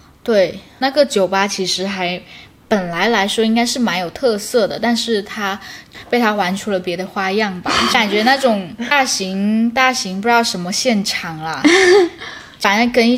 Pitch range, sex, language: 185-235 Hz, female, Chinese